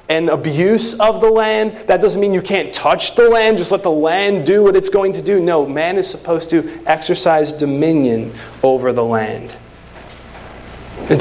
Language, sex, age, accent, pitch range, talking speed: English, male, 30-49, American, 120-160 Hz, 180 wpm